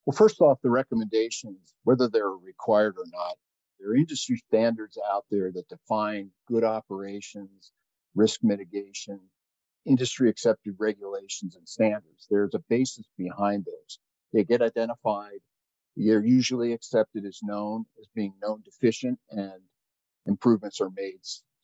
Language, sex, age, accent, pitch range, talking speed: English, male, 50-69, American, 100-125 Hz, 135 wpm